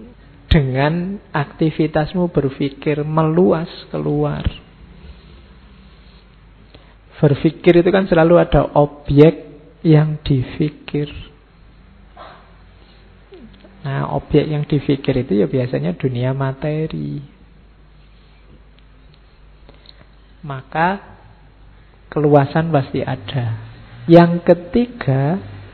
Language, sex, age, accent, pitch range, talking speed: Indonesian, male, 50-69, native, 135-180 Hz, 65 wpm